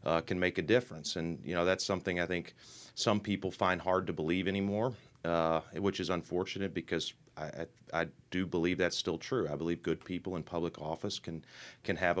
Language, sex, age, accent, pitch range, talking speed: English, male, 30-49, American, 80-95 Hz, 205 wpm